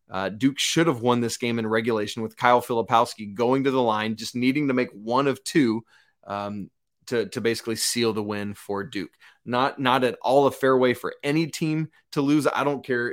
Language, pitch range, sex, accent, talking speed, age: English, 115-150 Hz, male, American, 215 wpm, 30-49